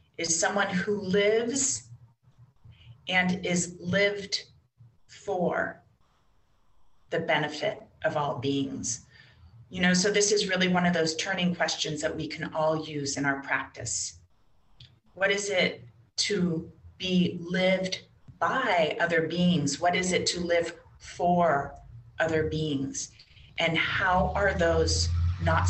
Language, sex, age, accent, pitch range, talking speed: English, female, 30-49, American, 125-170 Hz, 125 wpm